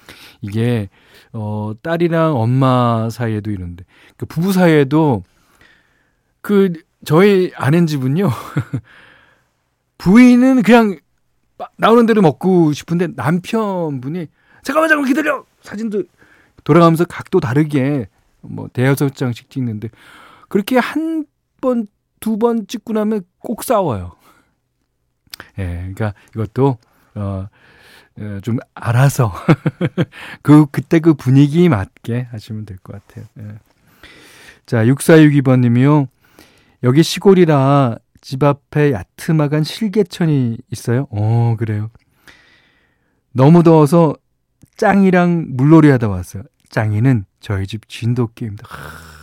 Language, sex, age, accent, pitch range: Korean, male, 40-59, native, 115-175 Hz